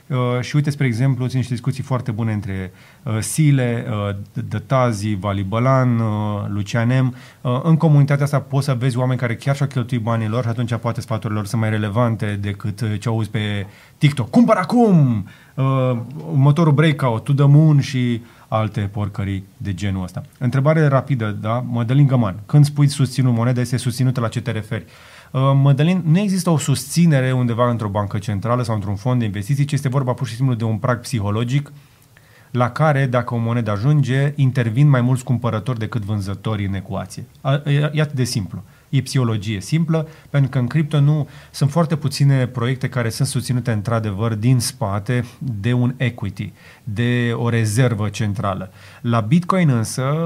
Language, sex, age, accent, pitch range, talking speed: Romanian, male, 30-49, native, 115-140 Hz, 165 wpm